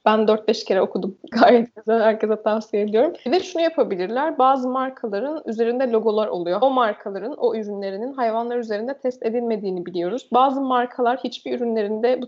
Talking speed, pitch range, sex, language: 155 wpm, 220-265 Hz, female, Turkish